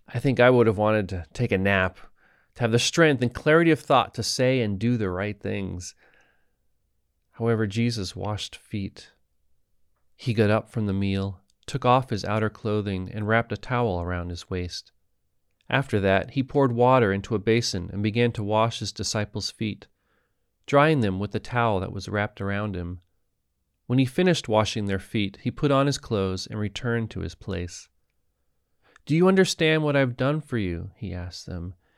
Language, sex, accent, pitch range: English, male, American, 95-120 Hz